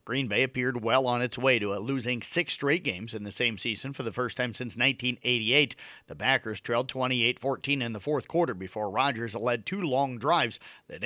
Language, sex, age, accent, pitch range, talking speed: English, male, 50-69, American, 120-165 Hz, 205 wpm